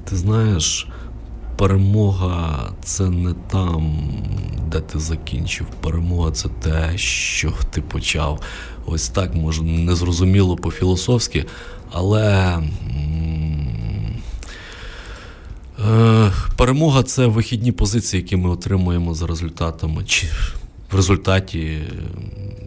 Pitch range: 80-95 Hz